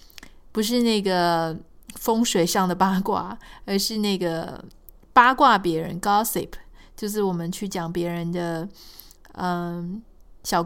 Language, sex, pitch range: Chinese, female, 175-225 Hz